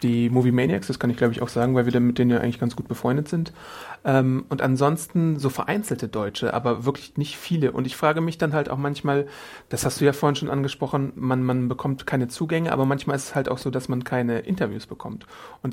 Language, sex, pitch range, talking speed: German, male, 125-145 Hz, 240 wpm